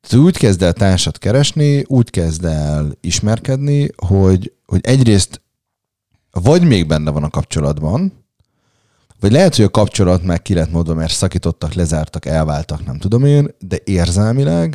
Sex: male